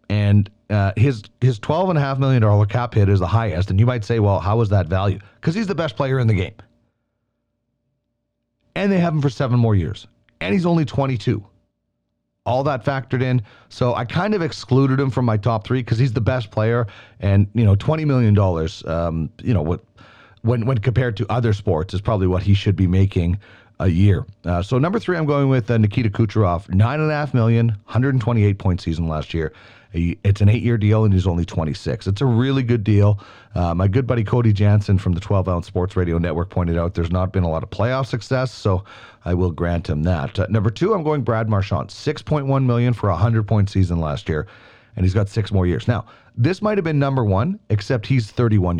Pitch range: 95-125 Hz